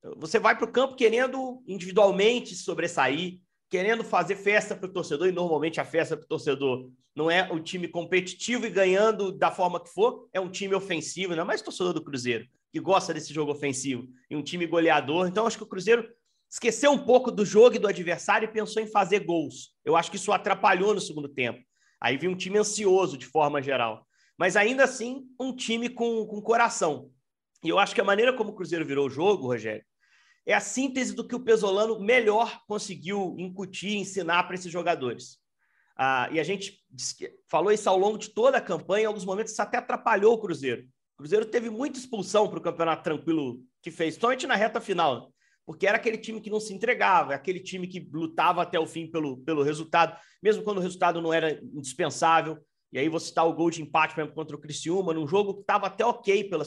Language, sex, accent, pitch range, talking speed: Portuguese, male, Brazilian, 160-220 Hz, 215 wpm